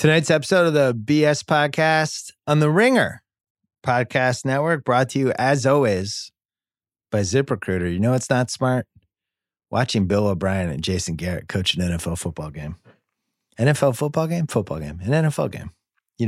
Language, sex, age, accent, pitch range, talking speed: English, male, 30-49, American, 95-135 Hz, 160 wpm